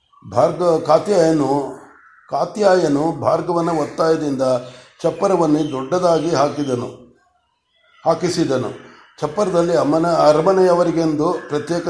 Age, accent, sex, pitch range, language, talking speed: 60-79, native, male, 145-170 Hz, Kannada, 65 wpm